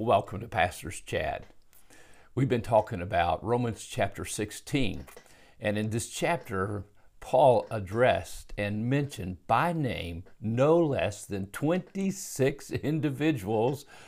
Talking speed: 110 wpm